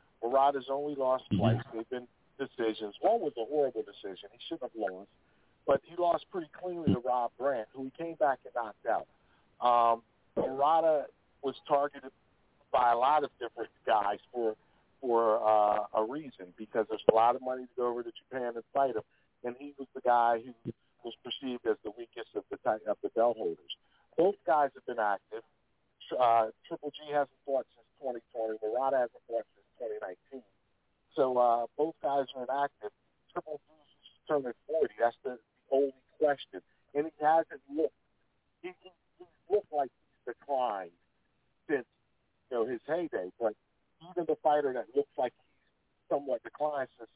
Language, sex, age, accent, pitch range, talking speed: English, male, 50-69, American, 110-145 Hz, 175 wpm